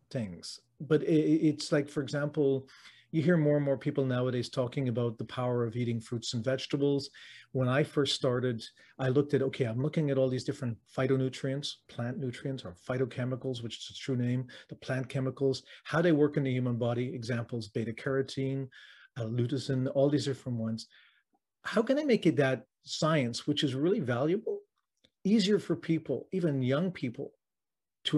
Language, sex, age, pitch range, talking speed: English, male, 40-59, 125-150 Hz, 180 wpm